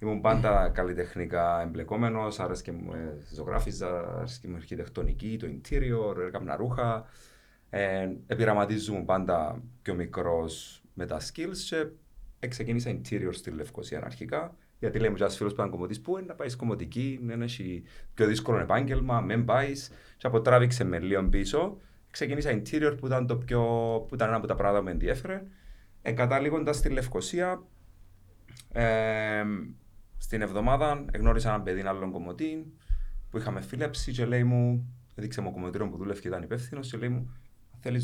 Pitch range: 95-125 Hz